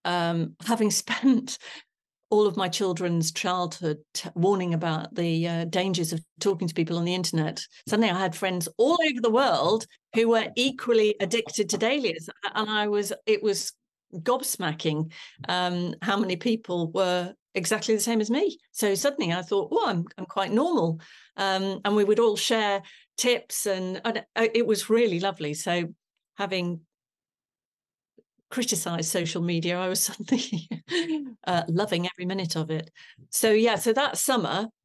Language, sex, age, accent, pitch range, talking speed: English, female, 40-59, British, 175-215 Hz, 160 wpm